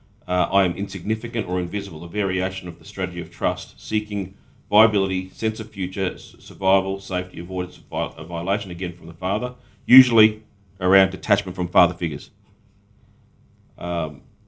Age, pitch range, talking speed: 40-59, 95-110 Hz, 145 wpm